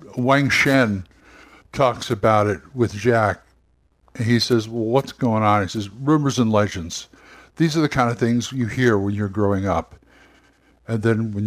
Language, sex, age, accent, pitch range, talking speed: English, male, 60-79, American, 105-135 Hz, 175 wpm